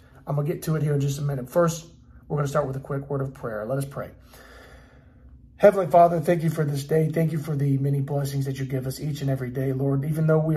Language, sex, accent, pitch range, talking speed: English, male, American, 135-160 Hz, 285 wpm